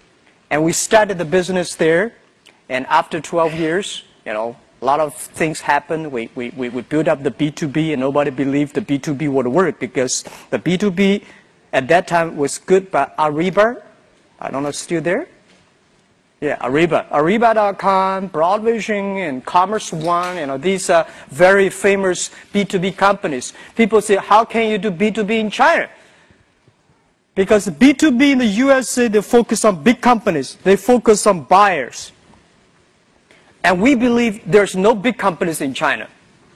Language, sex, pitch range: Chinese, male, 160-215 Hz